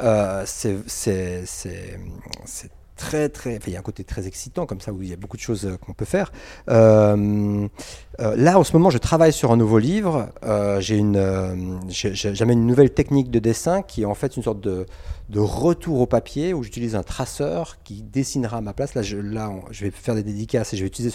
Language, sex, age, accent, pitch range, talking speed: French, male, 40-59, French, 100-125 Hz, 235 wpm